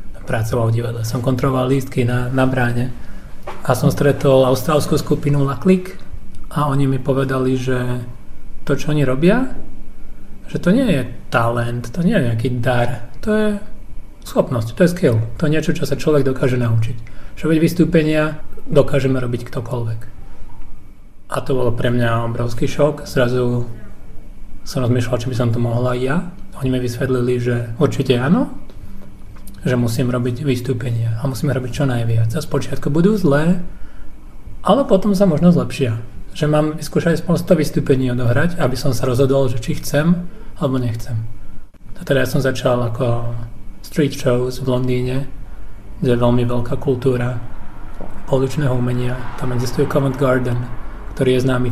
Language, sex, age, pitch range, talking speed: Czech, male, 30-49, 120-145 Hz, 155 wpm